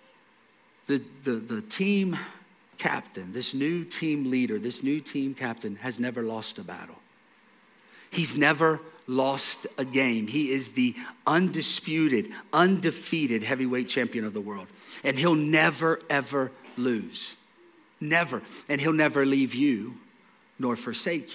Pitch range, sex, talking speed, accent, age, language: 135-190 Hz, male, 130 wpm, American, 40-59, English